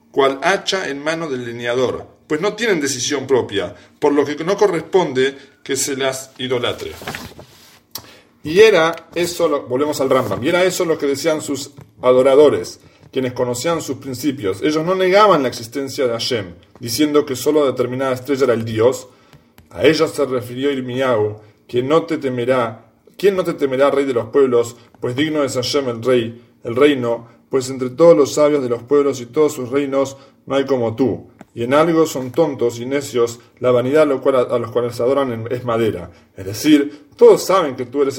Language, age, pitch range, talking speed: English, 40-59, 125-150 Hz, 185 wpm